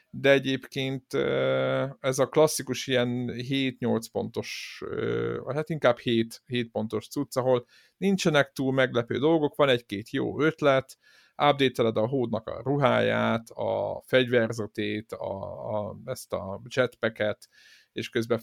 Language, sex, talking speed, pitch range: Hungarian, male, 120 wpm, 115-130 Hz